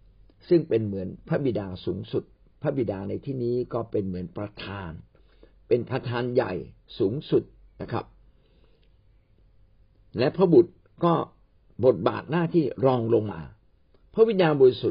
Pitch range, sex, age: 100-150 Hz, male, 60-79